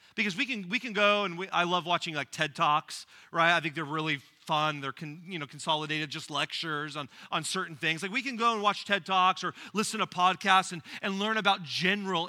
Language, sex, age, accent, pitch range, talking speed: English, male, 40-59, American, 185-240 Hz, 235 wpm